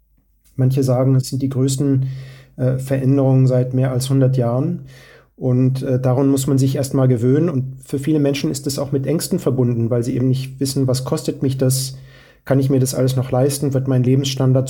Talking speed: 205 wpm